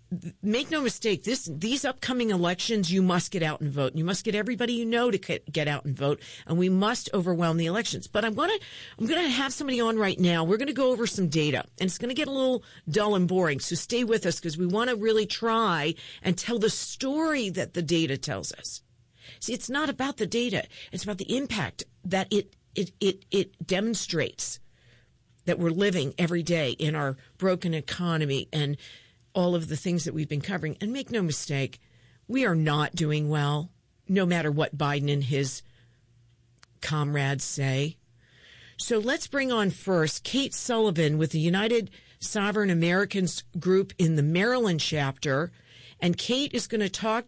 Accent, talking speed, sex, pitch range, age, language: American, 190 wpm, female, 155-220 Hz, 50-69, English